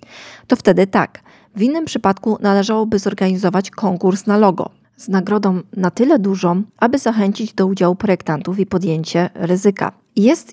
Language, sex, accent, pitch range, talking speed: Polish, female, native, 190-225 Hz, 140 wpm